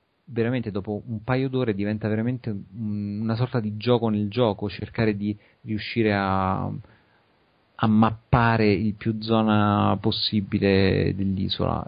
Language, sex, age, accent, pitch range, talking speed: Italian, male, 40-59, native, 105-120 Hz, 120 wpm